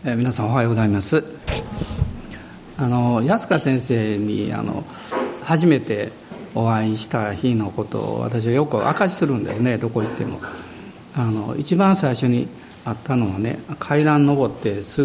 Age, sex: 50-69, male